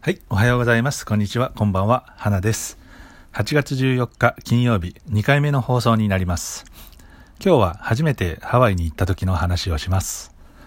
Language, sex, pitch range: Japanese, male, 90-120 Hz